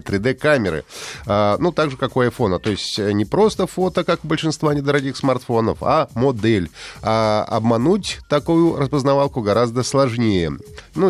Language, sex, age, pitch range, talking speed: Russian, male, 30-49, 115-145 Hz, 145 wpm